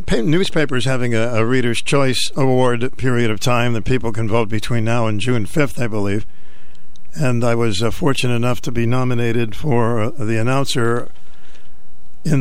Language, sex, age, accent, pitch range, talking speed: English, male, 60-79, American, 125-155 Hz, 170 wpm